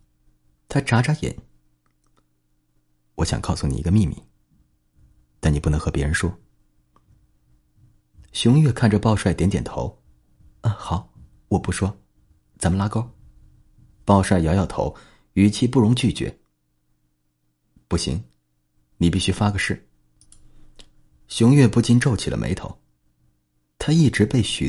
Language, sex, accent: Chinese, male, native